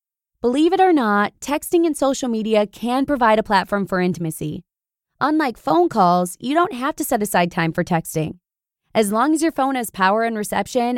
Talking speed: 190 wpm